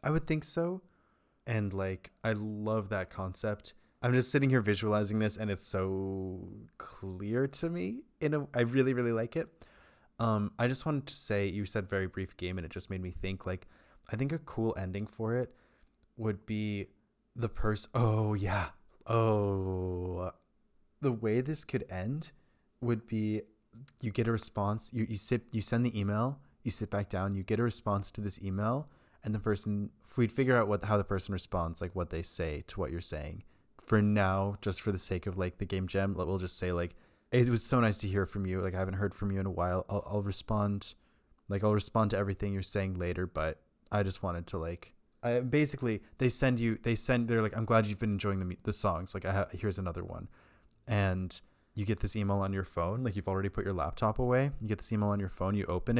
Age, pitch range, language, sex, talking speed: 20-39, 95-115 Hz, English, male, 225 wpm